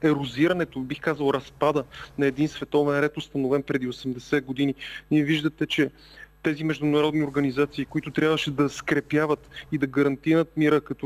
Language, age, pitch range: Bulgarian, 30-49, 135-155 Hz